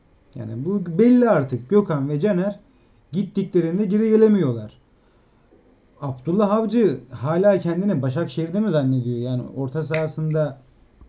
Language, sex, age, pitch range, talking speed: Turkish, male, 40-59, 135-180 Hz, 110 wpm